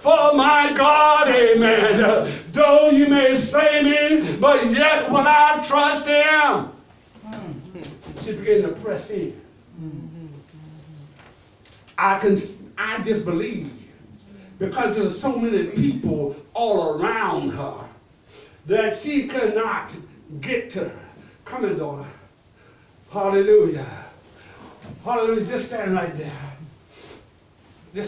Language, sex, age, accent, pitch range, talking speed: English, male, 60-79, American, 170-275 Hz, 105 wpm